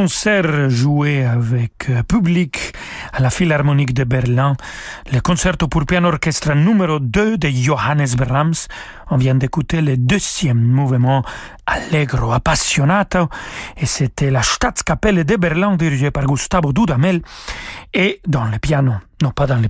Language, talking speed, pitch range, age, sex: French, 135 wpm, 135-170 Hz, 40-59, male